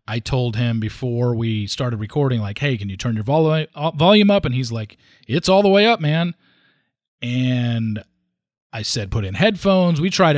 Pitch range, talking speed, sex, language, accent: 110-145 Hz, 190 wpm, male, English, American